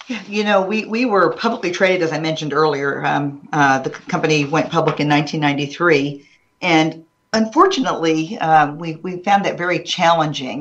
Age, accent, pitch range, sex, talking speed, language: 50-69, American, 145-165 Hz, female, 160 wpm, English